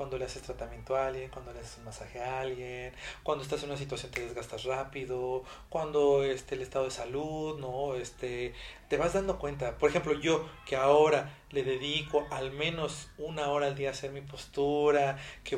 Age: 40-59